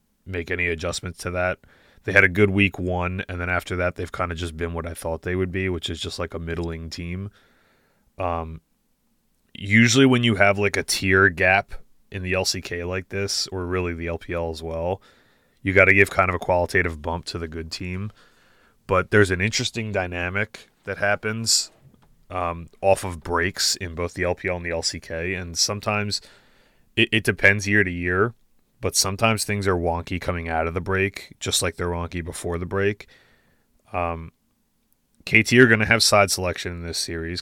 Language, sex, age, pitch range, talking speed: English, male, 30-49, 85-100 Hz, 190 wpm